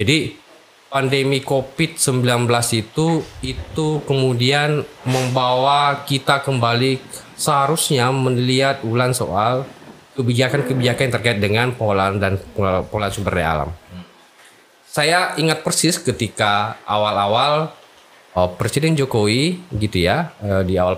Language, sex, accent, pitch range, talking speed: Indonesian, male, native, 105-145 Hz, 95 wpm